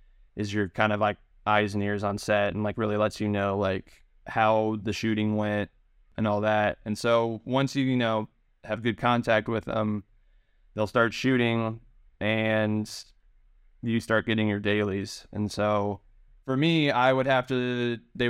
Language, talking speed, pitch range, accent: English, 175 wpm, 105-115 Hz, American